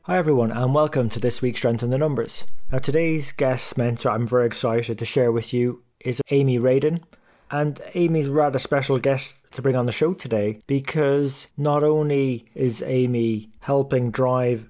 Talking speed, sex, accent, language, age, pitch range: 180 wpm, male, British, English, 20-39, 120-140 Hz